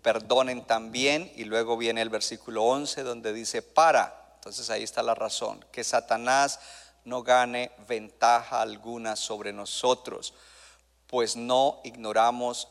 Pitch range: 105-140 Hz